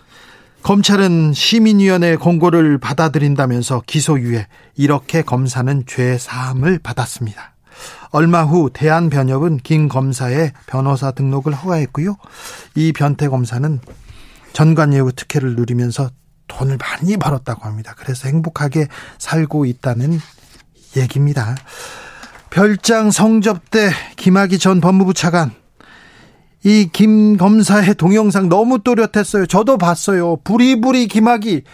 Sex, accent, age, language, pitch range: male, native, 40-59, Korean, 145-200 Hz